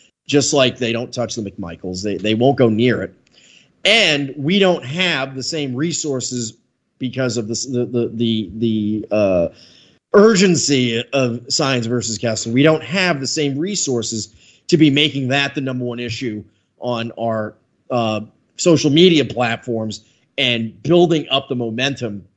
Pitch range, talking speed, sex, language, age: 120-160 Hz, 150 wpm, male, English, 30-49